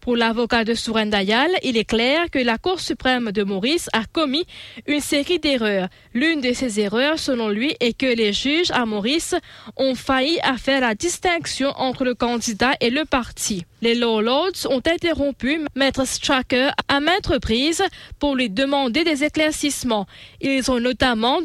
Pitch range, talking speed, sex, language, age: 235-300 Hz, 170 wpm, female, English, 20-39